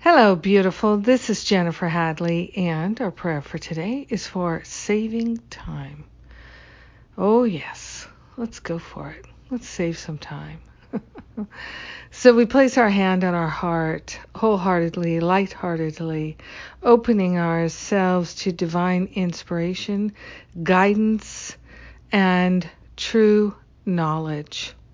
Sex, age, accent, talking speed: female, 60-79, American, 105 wpm